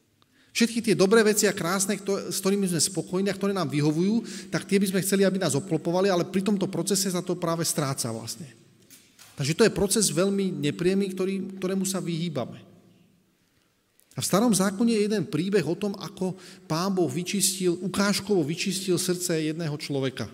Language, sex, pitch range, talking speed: Slovak, male, 135-190 Hz, 170 wpm